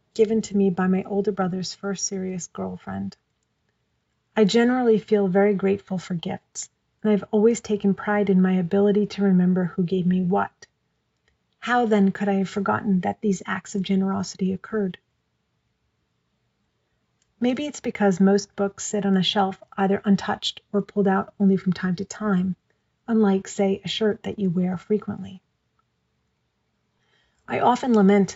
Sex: female